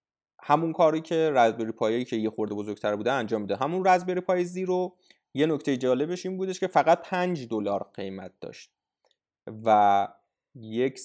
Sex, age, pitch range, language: male, 30-49, 110-155 Hz, Persian